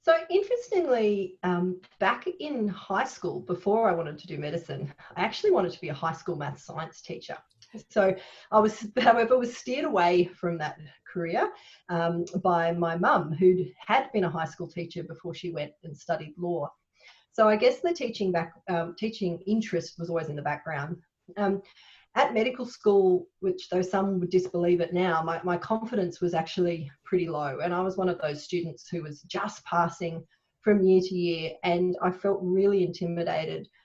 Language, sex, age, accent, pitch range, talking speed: English, female, 30-49, Australian, 165-195 Hz, 185 wpm